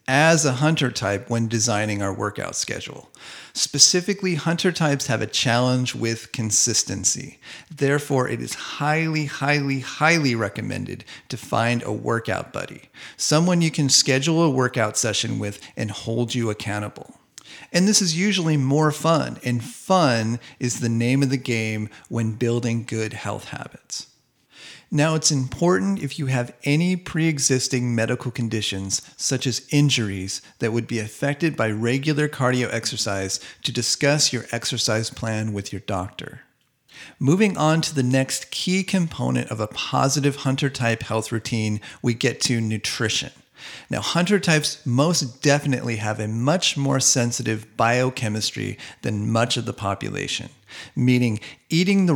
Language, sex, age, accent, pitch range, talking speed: English, male, 40-59, American, 115-145 Hz, 145 wpm